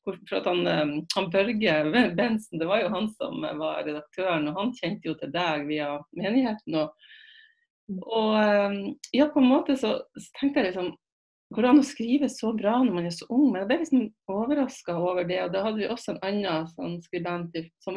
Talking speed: 210 wpm